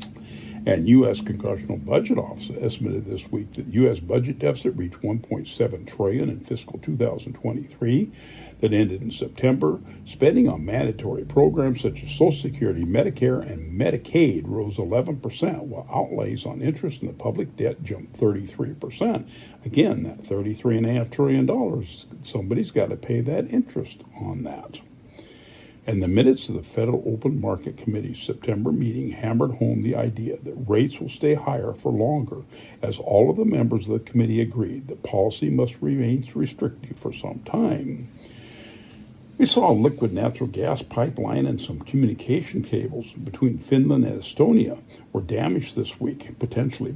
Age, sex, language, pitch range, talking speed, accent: 60-79, male, English, 110-130 Hz, 150 wpm, American